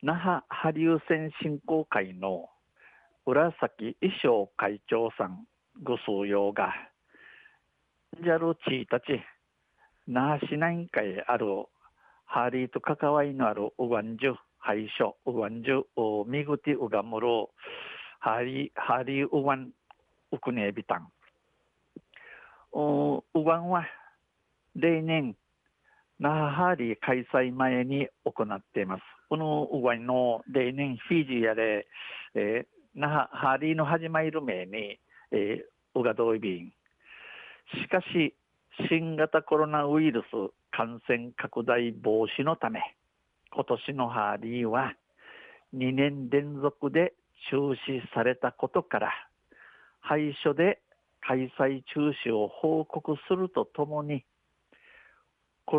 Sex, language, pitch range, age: male, Japanese, 120-160 Hz, 60-79